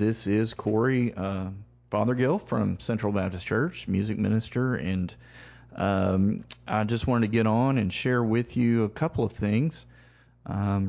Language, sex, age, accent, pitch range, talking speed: English, male, 40-59, American, 105-120 Hz, 155 wpm